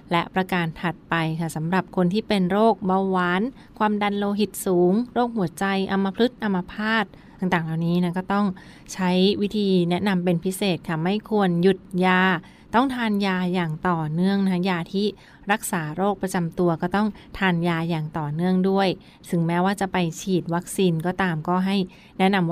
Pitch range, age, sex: 175-205 Hz, 20-39, female